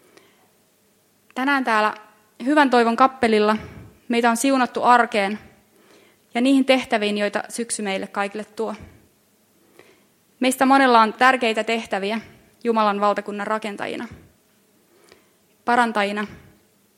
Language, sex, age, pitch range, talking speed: Finnish, female, 20-39, 205-235 Hz, 90 wpm